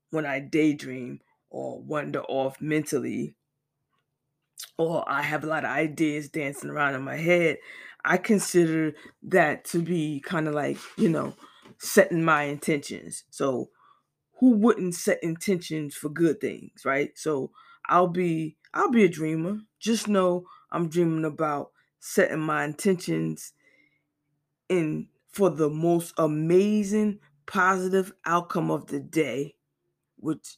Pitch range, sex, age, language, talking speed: 145-180 Hz, female, 20-39, English, 130 wpm